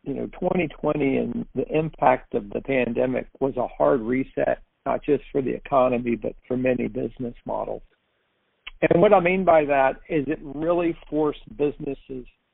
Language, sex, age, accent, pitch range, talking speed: English, male, 60-79, American, 130-165 Hz, 165 wpm